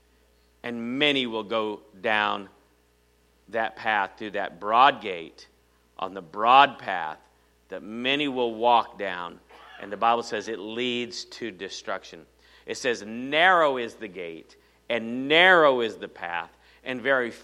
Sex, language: male, English